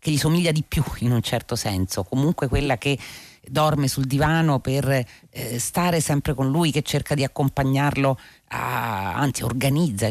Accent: native